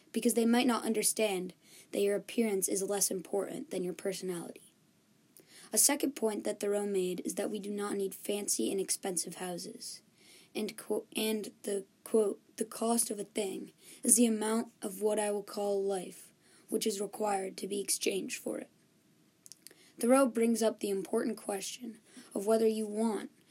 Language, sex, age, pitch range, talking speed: English, female, 10-29, 195-230 Hz, 170 wpm